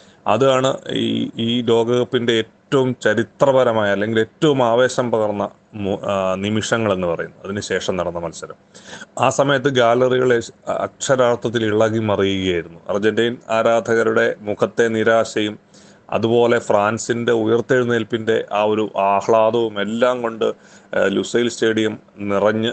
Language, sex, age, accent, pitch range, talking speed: Malayalam, male, 30-49, native, 105-120 Hz, 100 wpm